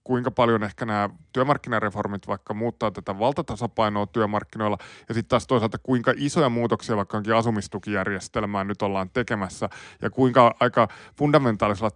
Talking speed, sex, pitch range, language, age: 130 wpm, male, 105-125 Hz, Finnish, 20-39